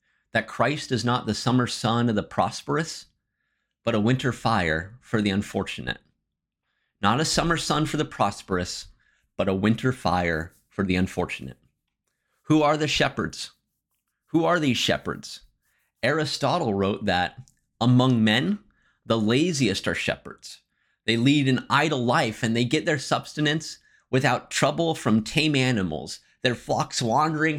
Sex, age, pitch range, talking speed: male, 30-49, 95-130 Hz, 145 wpm